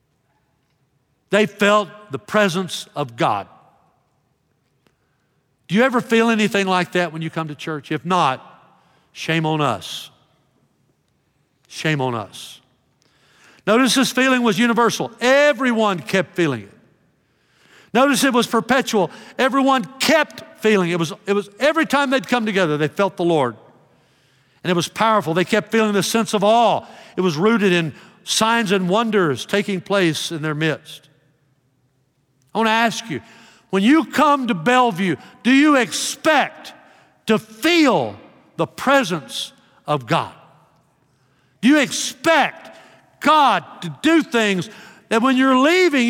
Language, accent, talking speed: English, American, 140 wpm